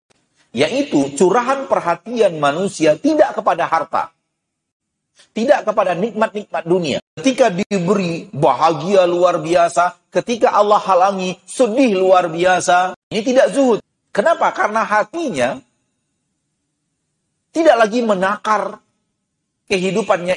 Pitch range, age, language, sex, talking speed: 155-215 Hz, 40-59, Indonesian, male, 95 wpm